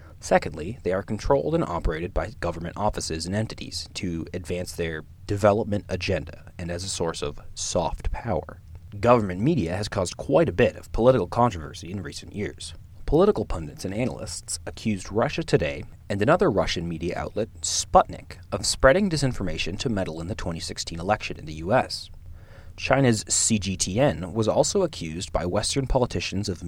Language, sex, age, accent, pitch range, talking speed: English, male, 30-49, American, 85-120 Hz, 155 wpm